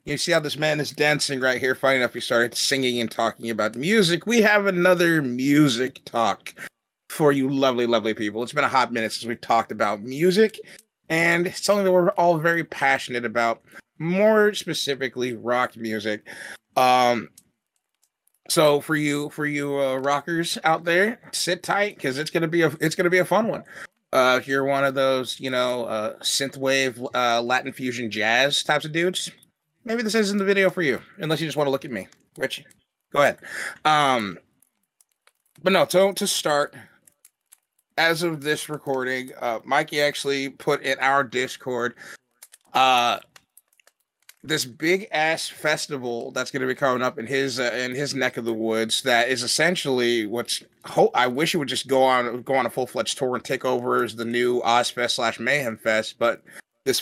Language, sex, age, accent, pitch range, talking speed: English, male, 30-49, American, 125-165 Hz, 185 wpm